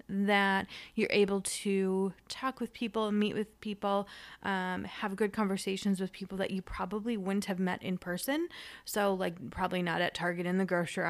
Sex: female